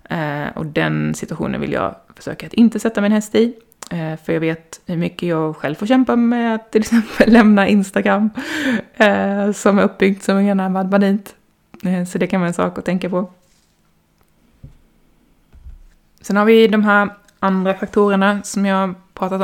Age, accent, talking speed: 20-39, native, 170 wpm